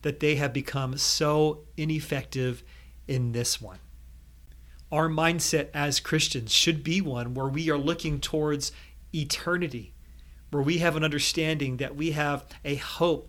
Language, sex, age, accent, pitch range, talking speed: English, male, 40-59, American, 125-160 Hz, 145 wpm